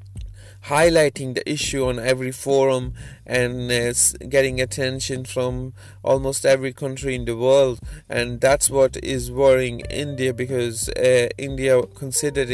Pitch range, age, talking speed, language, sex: 115-130 Hz, 20-39, 130 wpm, English, male